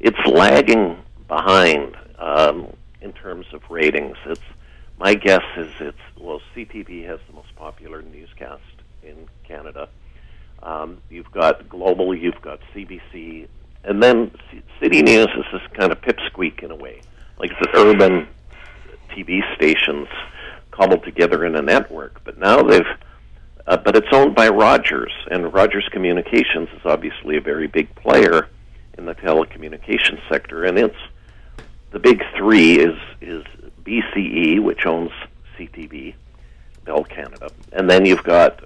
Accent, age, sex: American, 50-69, male